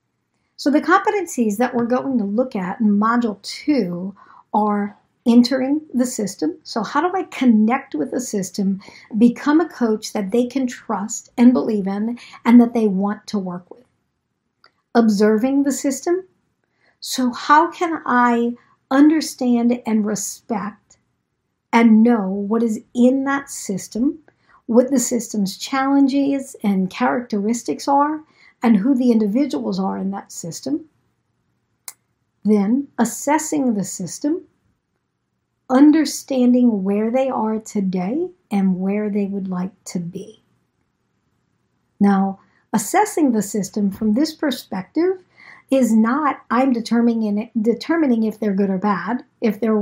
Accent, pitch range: American, 210-270 Hz